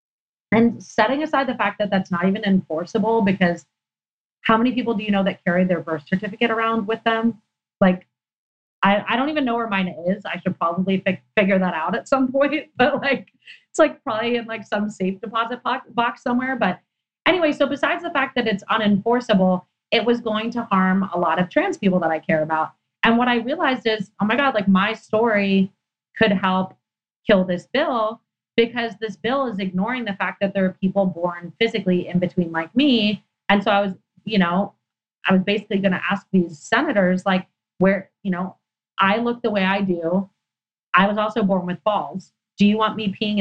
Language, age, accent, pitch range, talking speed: English, 30-49, American, 190-235 Hz, 200 wpm